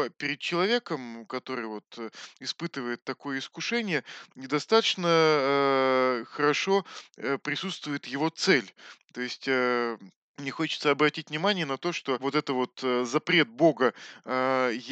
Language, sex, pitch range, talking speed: Russian, male, 130-175 Hz, 115 wpm